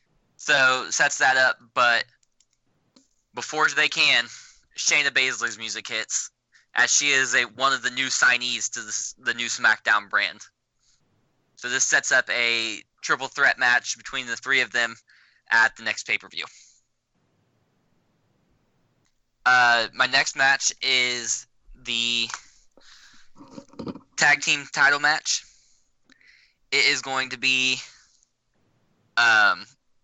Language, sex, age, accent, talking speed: English, male, 10-29, American, 125 wpm